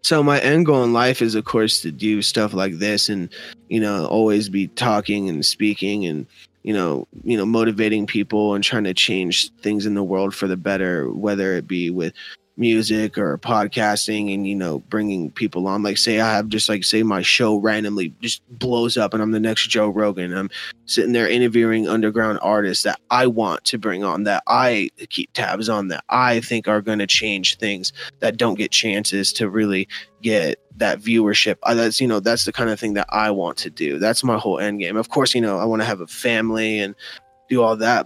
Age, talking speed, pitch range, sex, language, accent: 20-39, 220 wpm, 100-120 Hz, male, English, American